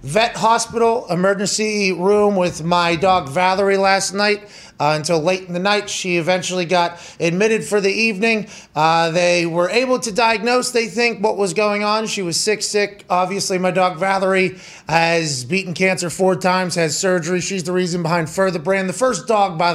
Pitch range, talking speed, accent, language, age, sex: 175-210 Hz, 180 wpm, American, English, 30-49, male